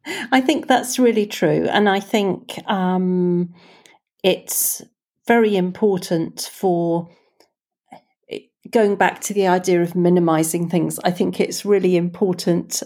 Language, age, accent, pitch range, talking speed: English, 40-59, British, 180-215 Hz, 120 wpm